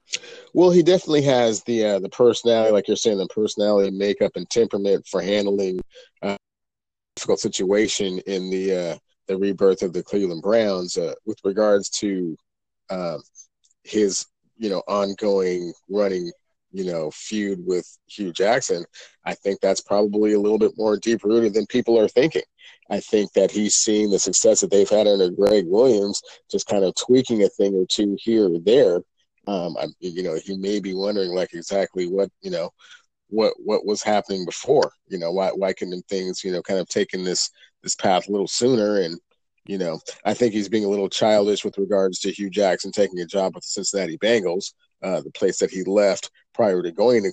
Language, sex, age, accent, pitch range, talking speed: English, male, 40-59, American, 95-110 Hz, 195 wpm